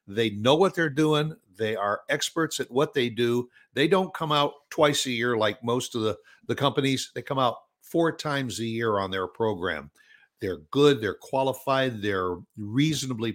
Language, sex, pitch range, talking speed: English, male, 115-165 Hz, 185 wpm